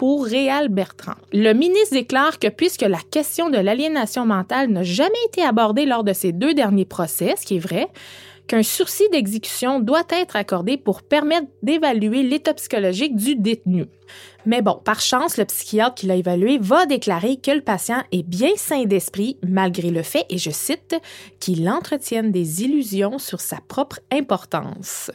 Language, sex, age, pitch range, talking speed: French, female, 20-39, 190-255 Hz, 175 wpm